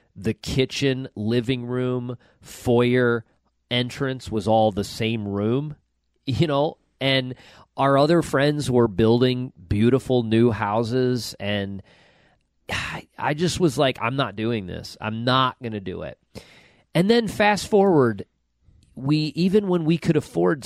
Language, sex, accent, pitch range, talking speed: English, male, American, 110-150 Hz, 140 wpm